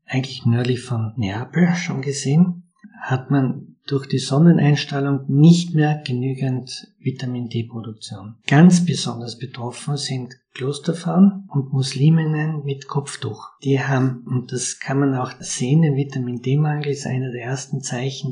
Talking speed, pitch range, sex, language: 130 wpm, 125-145 Hz, male, German